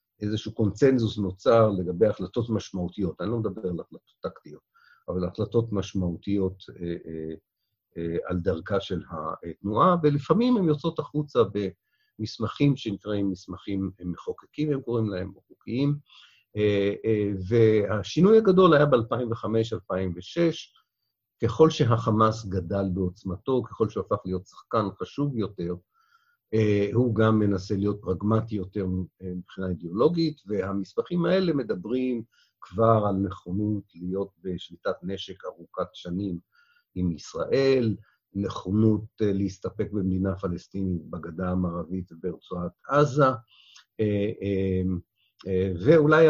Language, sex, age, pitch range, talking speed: Hebrew, male, 50-69, 95-115 Hz, 100 wpm